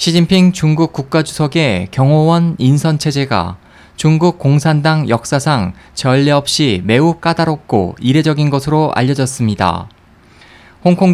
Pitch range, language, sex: 125-170 Hz, Korean, male